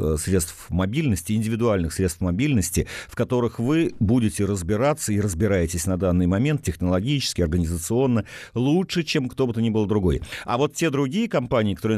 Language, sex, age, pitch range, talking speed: Russian, male, 50-69, 95-130 Hz, 155 wpm